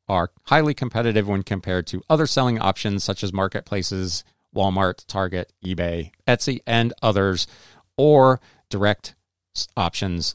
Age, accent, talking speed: 40-59, American, 120 wpm